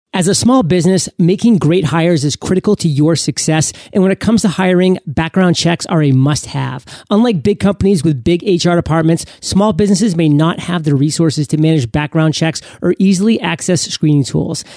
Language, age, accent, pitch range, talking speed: English, 40-59, American, 160-195 Hz, 185 wpm